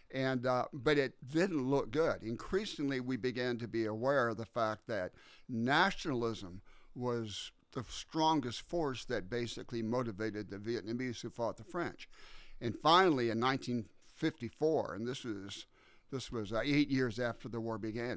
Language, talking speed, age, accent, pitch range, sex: English, 155 wpm, 50-69, American, 110-135 Hz, male